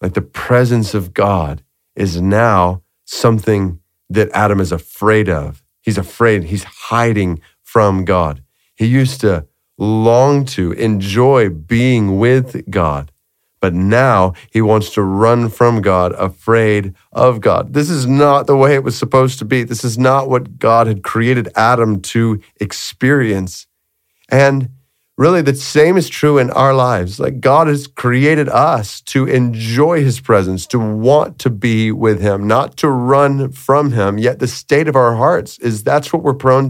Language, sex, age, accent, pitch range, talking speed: English, male, 30-49, American, 100-135 Hz, 160 wpm